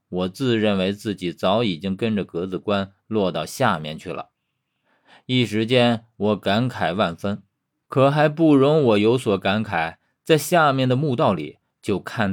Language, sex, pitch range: Chinese, male, 100-135 Hz